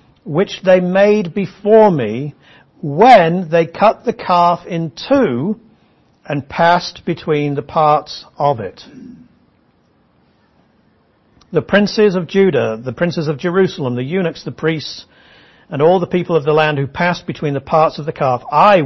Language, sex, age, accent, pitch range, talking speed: English, male, 60-79, British, 130-175 Hz, 150 wpm